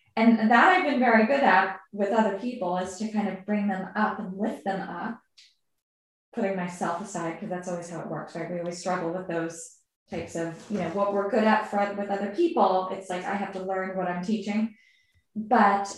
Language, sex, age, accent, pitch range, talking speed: English, female, 20-39, American, 185-215 Hz, 220 wpm